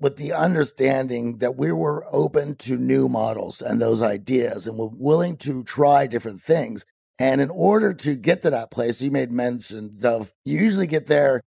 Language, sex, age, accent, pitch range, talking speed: English, male, 50-69, American, 125-155 Hz, 190 wpm